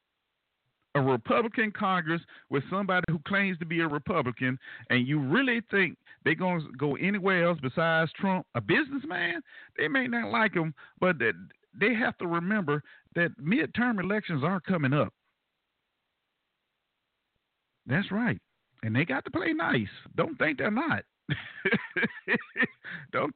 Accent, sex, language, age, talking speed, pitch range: American, male, English, 50-69, 140 wpm, 125-180 Hz